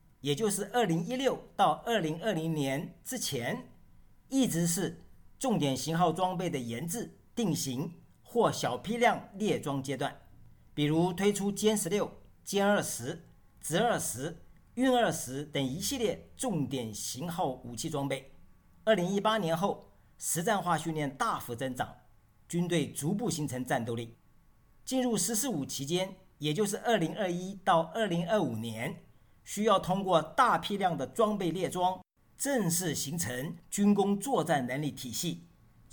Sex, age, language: male, 50-69, Chinese